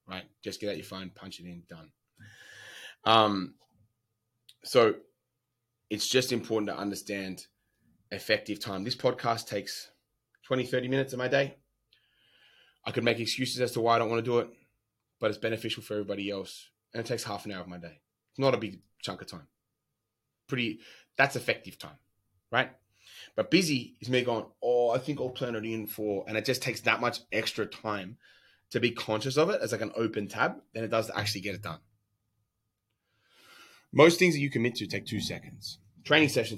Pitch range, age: 100-125 Hz, 20-39